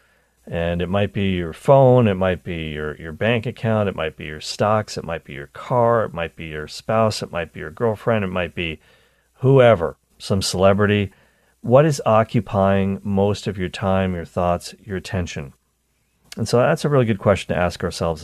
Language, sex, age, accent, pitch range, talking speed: English, male, 40-59, American, 85-115 Hz, 195 wpm